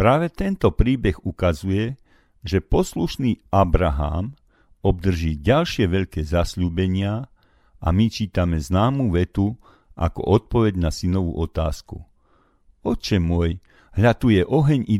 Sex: male